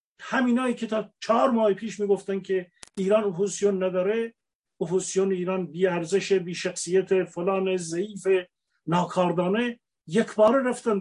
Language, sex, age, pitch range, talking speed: Persian, male, 50-69, 190-230 Hz, 130 wpm